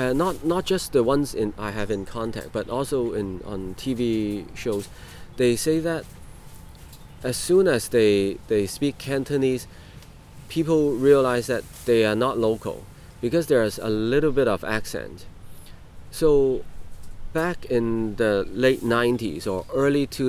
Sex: male